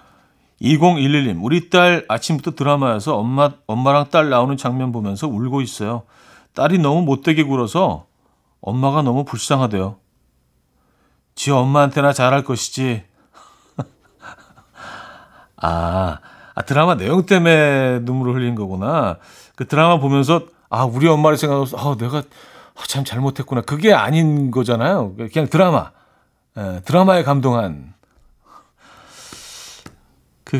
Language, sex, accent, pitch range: Korean, male, native, 115-155 Hz